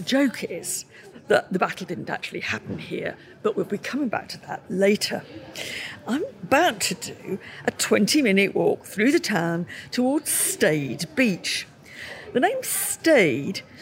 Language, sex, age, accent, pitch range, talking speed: English, female, 50-69, British, 195-295 Hz, 150 wpm